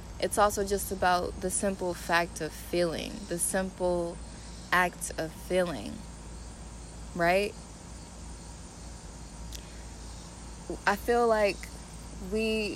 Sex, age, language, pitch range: female, 20-39, English, 165-195 Hz